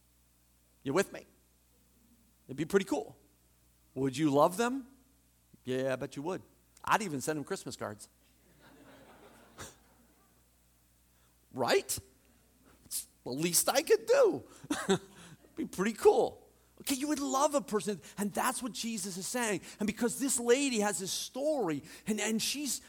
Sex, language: male, English